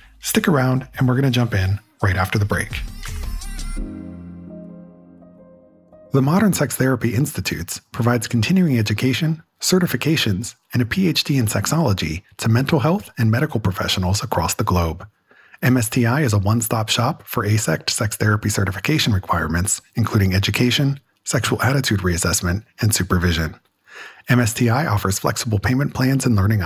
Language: English